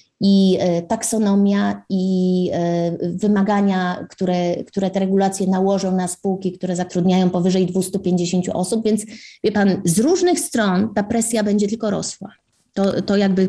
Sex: female